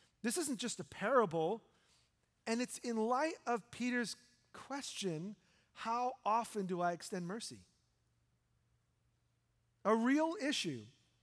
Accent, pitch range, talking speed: American, 140-205 Hz, 110 wpm